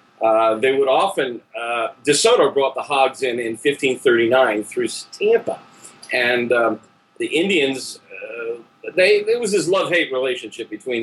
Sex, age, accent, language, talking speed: male, 40-59, American, English, 150 wpm